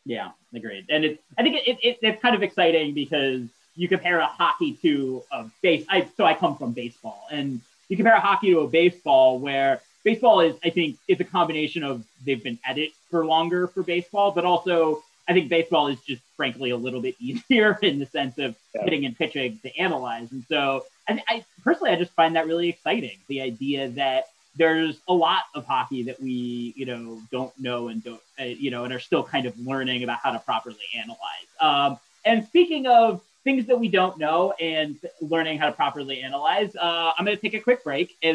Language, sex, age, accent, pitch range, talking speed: English, male, 30-49, American, 135-185 Hz, 215 wpm